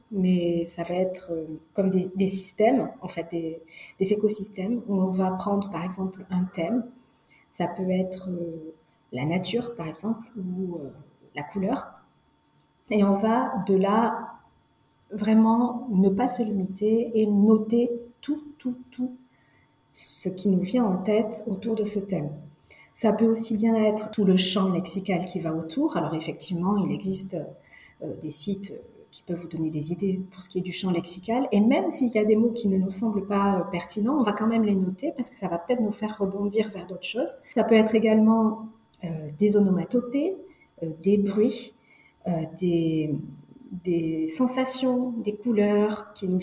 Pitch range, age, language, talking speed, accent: 175-225 Hz, 40-59, French, 180 wpm, French